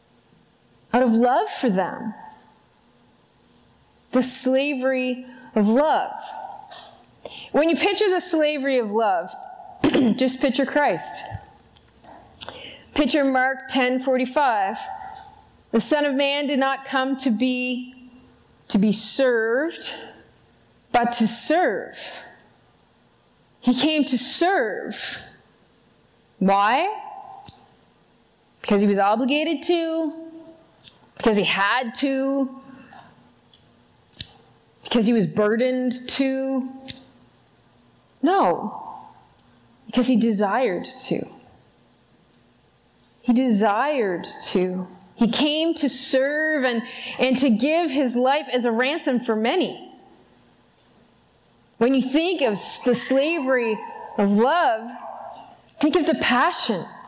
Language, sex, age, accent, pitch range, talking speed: English, female, 30-49, American, 235-305 Hz, 95 wpm